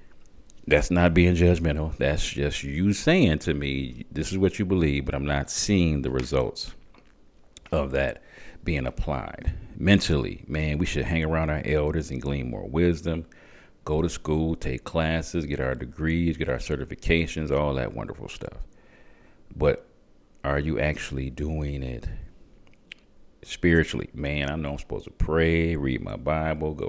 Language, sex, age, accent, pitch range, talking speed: English, male, 40-59, American, 70-85 Hz, 155 wpm